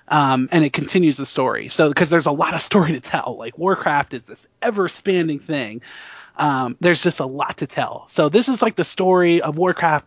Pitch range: 150-200 Hz